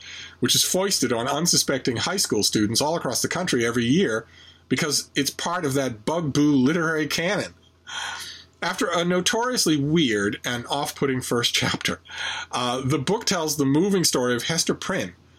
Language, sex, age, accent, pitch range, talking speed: English, male, 40-59, American, 120-180 Hz, 155 wpm